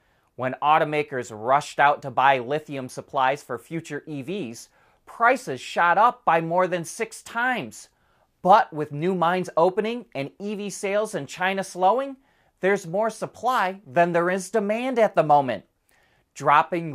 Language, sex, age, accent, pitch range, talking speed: English, male, 30-49, American, 140-200 Hz, 145 wpm